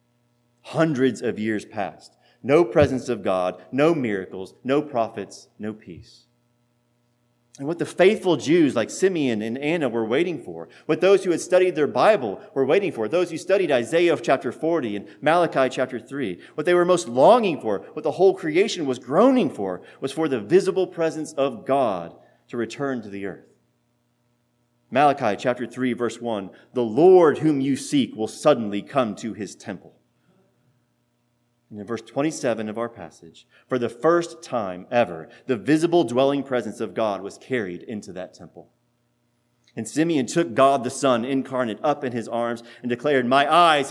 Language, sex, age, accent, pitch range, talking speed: English, male, 30-49, American, 115-150 Hz, 170 wpm